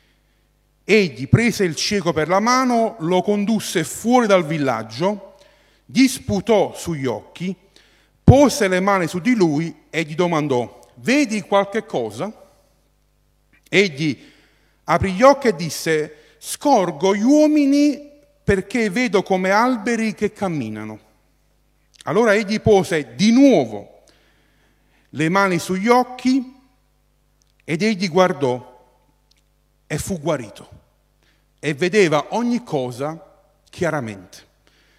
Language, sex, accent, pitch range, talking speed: Italian, male, native, 150-215 Hz, 110 wpm